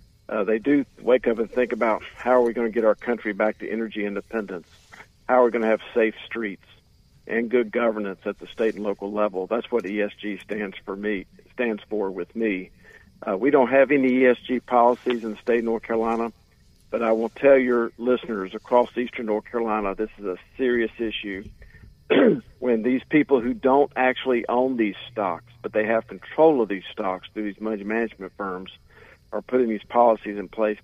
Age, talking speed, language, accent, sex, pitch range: 50-69, 200 wpm, English, American, male, 105-125 Hz